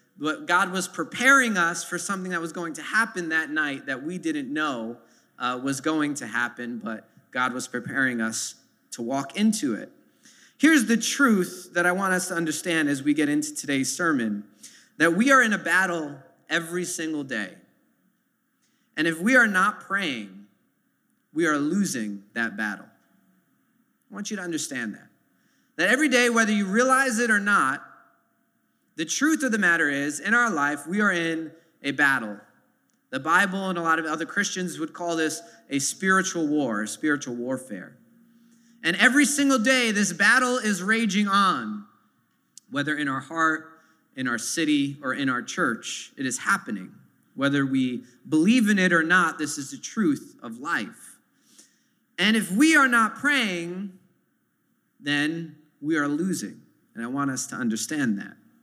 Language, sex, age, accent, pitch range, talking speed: English, male, 30-49, American, 145-230 Hz, 170 wpm